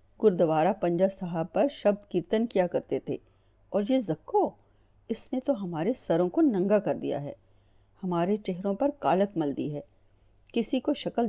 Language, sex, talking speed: Urdu, female, 170 wpm